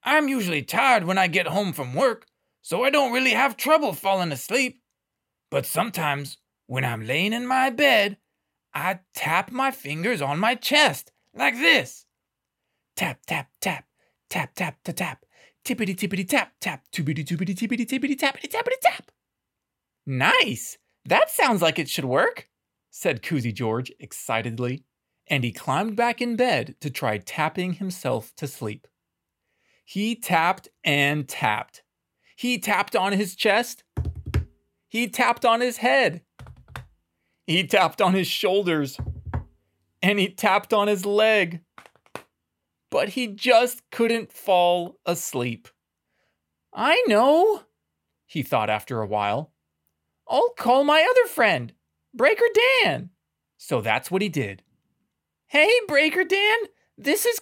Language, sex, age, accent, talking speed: English, male, 30-49, American, 125 wpm